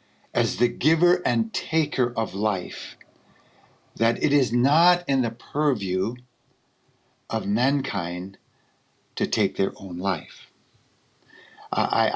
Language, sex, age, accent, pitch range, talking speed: English, male, 50-69, American, 105-135 Hz, 110 wpm